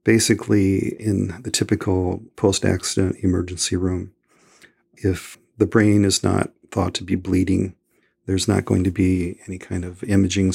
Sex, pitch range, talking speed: male, 90-100 Hz, 140 wpm